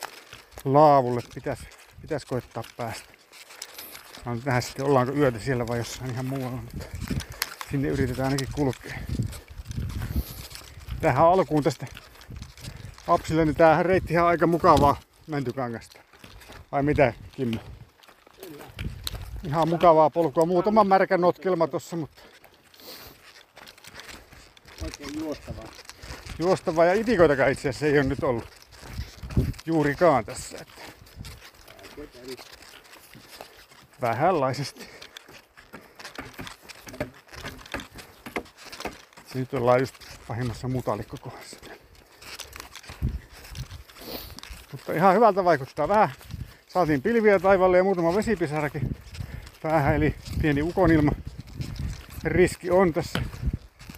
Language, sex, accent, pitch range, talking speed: Finnish, male, native, 125-165 Hz, 90 wpm